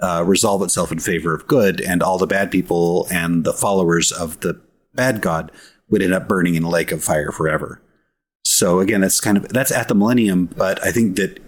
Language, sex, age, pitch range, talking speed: English, male, 30-49, 90-115 Hz, 220 wpm